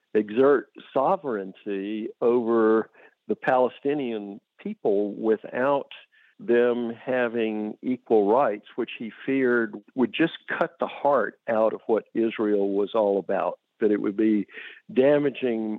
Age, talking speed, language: 50-69, 120 wpm, English